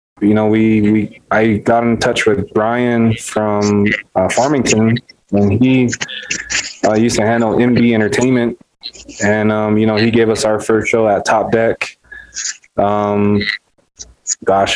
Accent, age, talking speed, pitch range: American, 20-39, 145 wpm, 105-120 Hz